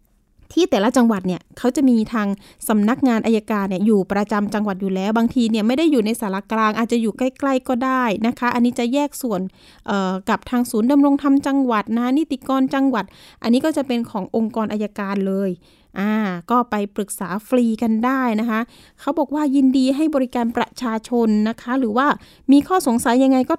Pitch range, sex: 210-260 Hz, female